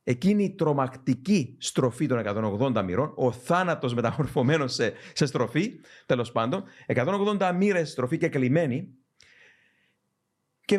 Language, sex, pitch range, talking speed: Greek, male, 120-165 Hz, 115 wpm